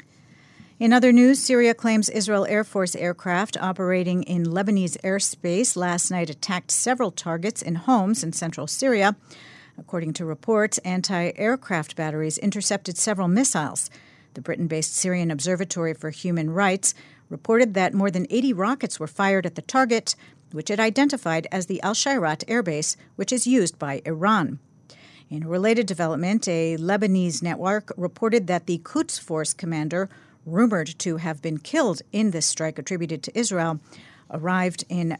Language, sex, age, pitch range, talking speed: English, female, 50-69, 160-220 Hz, 145 wpm